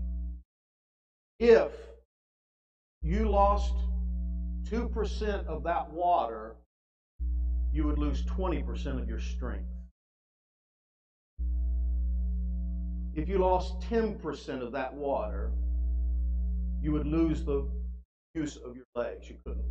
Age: 50-69